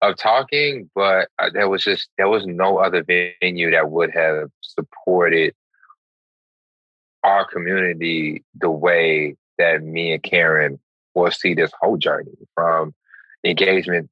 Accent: American